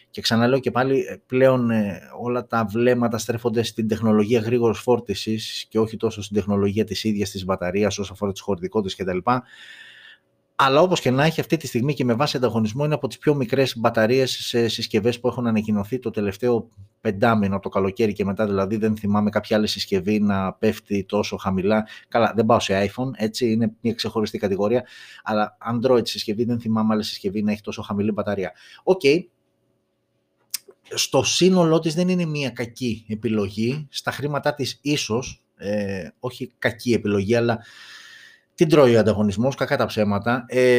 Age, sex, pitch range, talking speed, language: 20-39, male, 105-125 Hz, 170 wpm, Greek